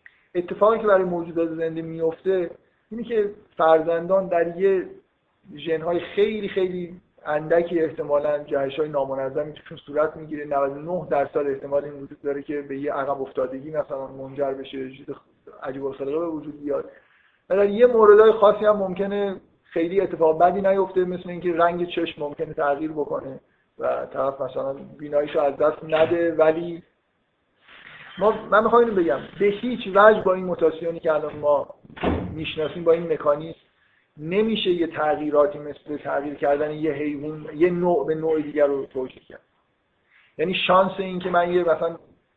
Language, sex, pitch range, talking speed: Persian, male, 145-180 Hz, 150 wpm